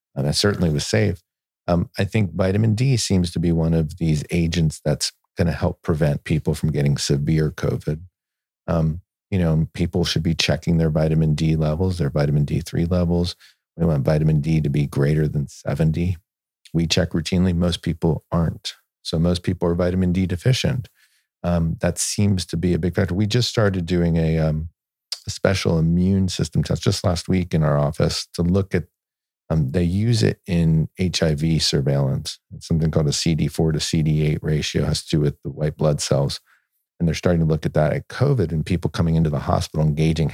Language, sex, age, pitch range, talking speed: English, male, 50-69, 80-95 Hz, 195 wpm